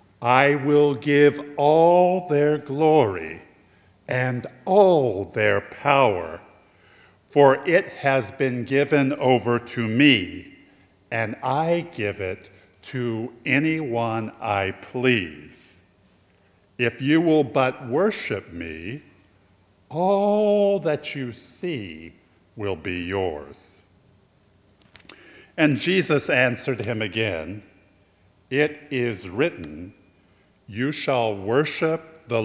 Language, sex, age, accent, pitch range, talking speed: English, male, 50-69, American, 100-150 Hz, 95 wpm